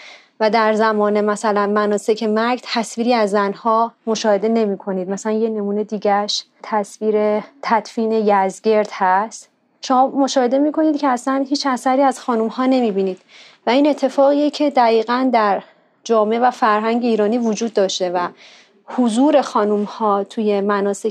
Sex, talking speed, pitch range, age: female, 145 wpm, 210-270 Hz, 30-49